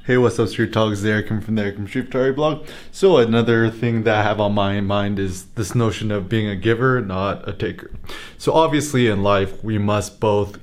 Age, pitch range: 20-39, 105-130 Hz